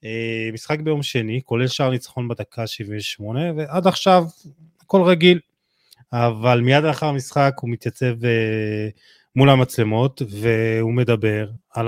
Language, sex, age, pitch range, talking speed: Hebrew, male, 20-39, 115-145 Hz, 125 wpm